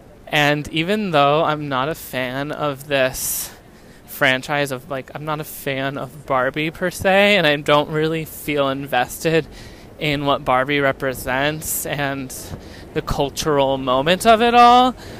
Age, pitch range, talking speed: 20-39, 140-160 Hz, 145 wpm